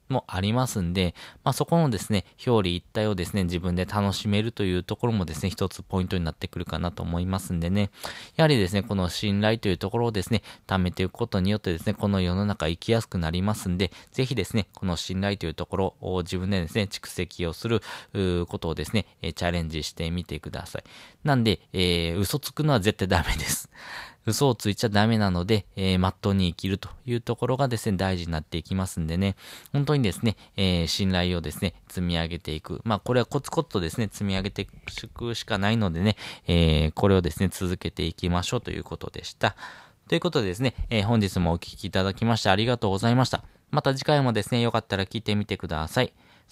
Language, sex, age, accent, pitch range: Japanese, male, 20-39, native, 90-110 Hz